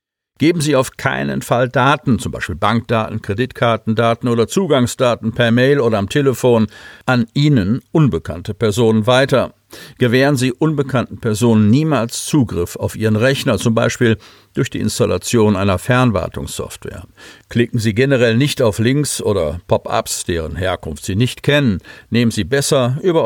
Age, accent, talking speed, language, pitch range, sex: 50-69, German, 140 wpm, German, 105-130 Hz, male